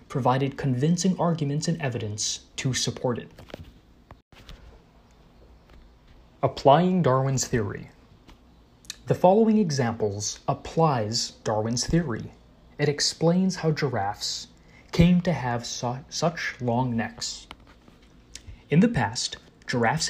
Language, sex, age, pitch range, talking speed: English, male, 20-39, 115-165 Hz, 95 wpm